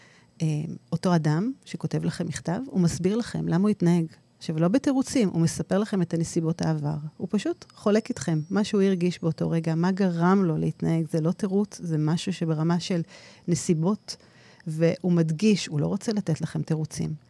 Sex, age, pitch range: female, 40-59, 160-195 Hz